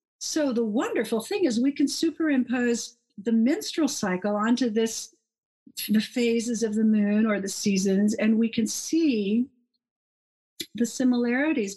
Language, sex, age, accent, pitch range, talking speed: English, female, 50-69, American, 215-270 Hz, 140 wpm